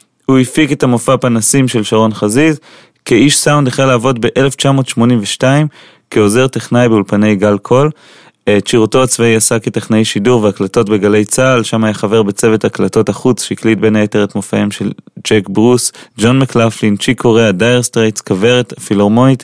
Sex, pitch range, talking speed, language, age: male, 110-125 Hz, 150 wpm, Hebrew, 20-39